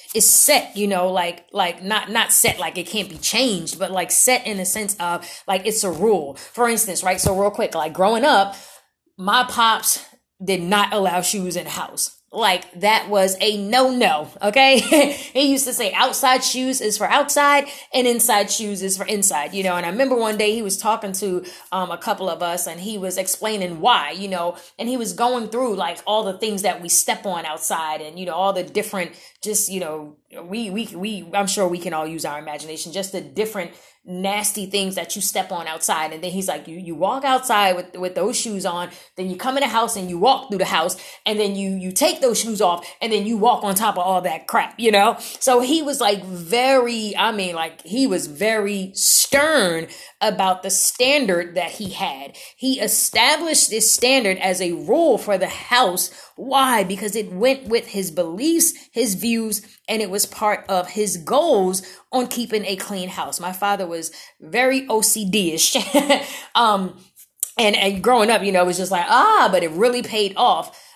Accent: American